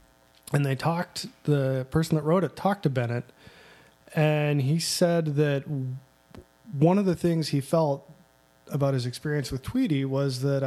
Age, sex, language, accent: 20-39, male, English, American